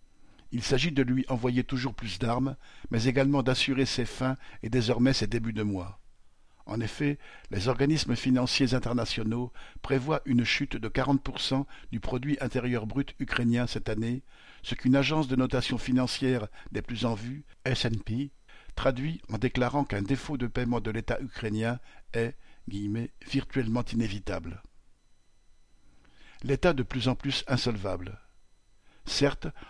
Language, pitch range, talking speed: French, 115-135 Hz, 140 wpm